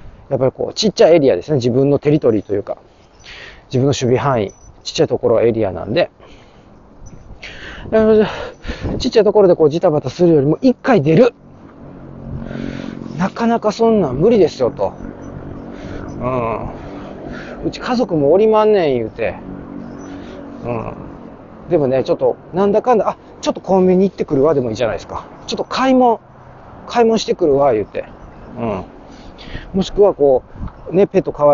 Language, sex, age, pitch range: Japanese, male, 40-59, 140-210 Hz